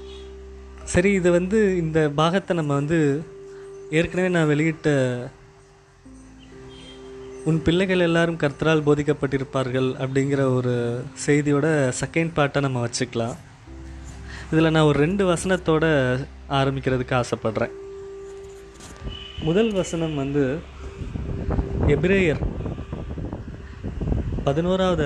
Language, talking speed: Tamil, 80 wpm